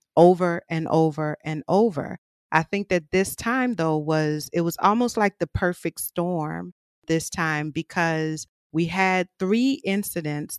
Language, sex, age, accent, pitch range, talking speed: English, female, 40-59, American, 155-190 Hz, 145 wpm